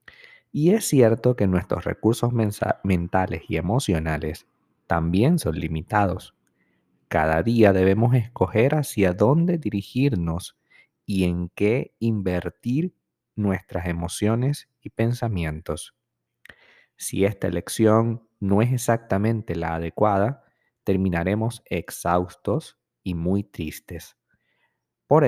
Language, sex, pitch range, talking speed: Spanish, male, 90-115 Hz, 95 wpm